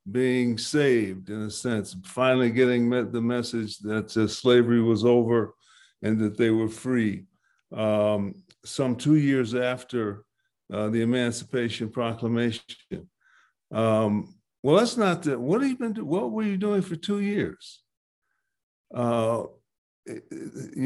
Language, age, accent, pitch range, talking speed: English, 50-69, American, 115-170 Hz, 140 wpm